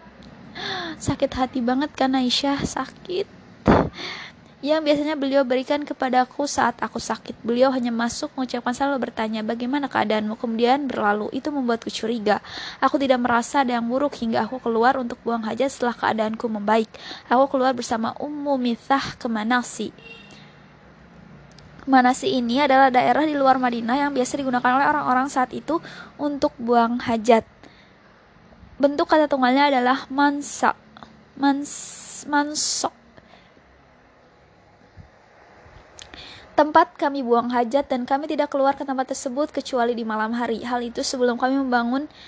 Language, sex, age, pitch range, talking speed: Indonesian, female, 20-39, 235-280 Hz, 130 wpm